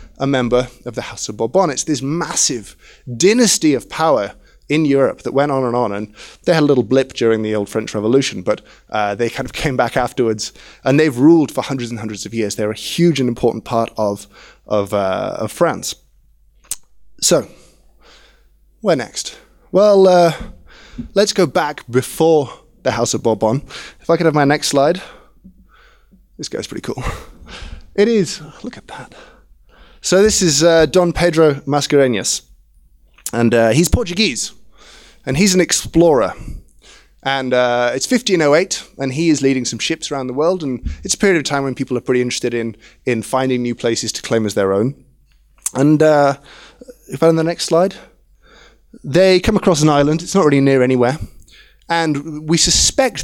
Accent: British